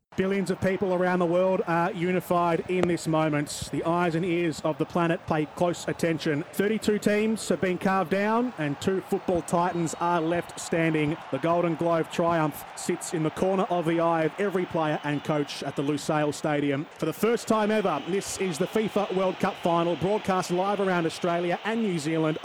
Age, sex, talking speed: 30-49, male, 195 wpm